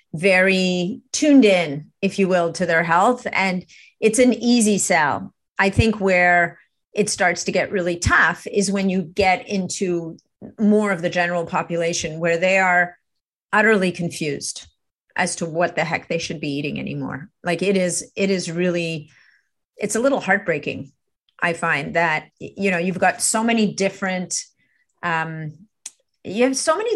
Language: English